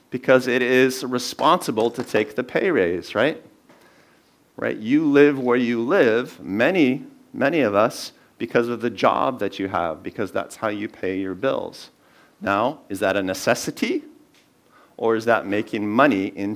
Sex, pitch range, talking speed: male, 105-150 Hz, 165 wpm